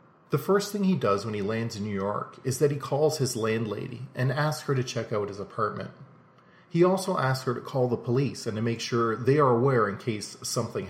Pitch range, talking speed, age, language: 115-145 Hz, 235 wpm, 40-59, English